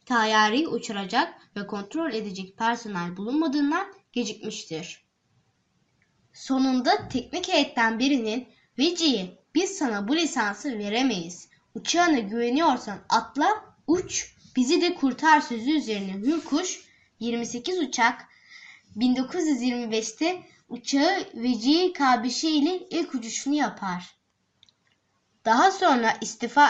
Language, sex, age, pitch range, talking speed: Turkish, female, 10-29, 225-310 Hz, 95 wpm